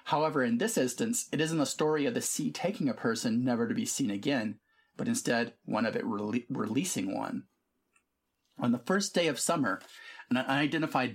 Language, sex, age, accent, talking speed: English, male, 30-49, American, 185 wpm